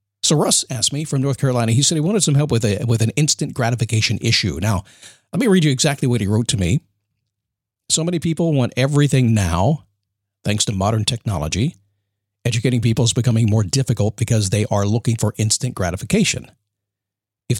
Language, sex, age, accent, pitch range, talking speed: English, male, 50-69, American, 105-145 Hz, 190 wpm